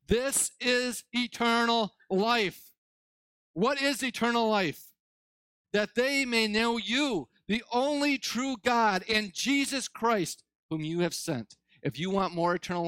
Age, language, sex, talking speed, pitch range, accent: 40-59, English, male, 135 wpm, 155-225 Hz, American